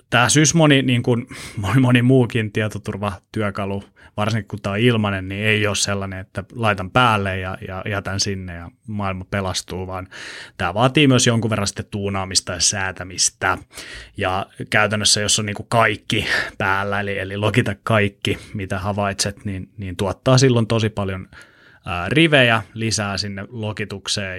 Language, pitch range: Finnish, 95-115 Hz